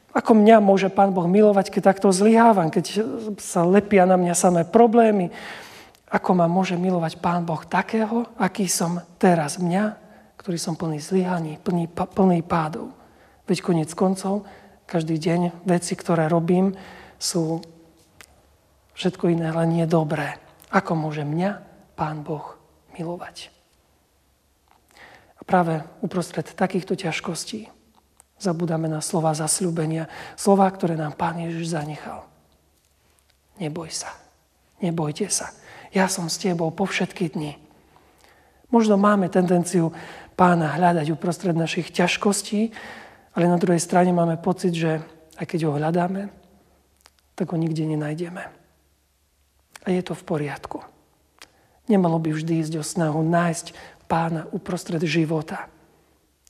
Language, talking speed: Slovak, 125 wpm